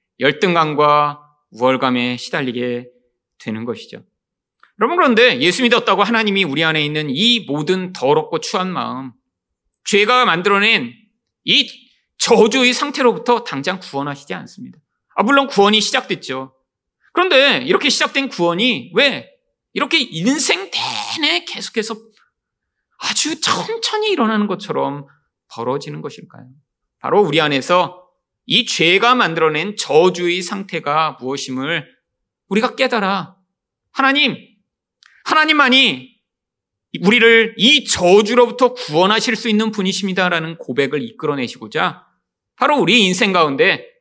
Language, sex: Korean, male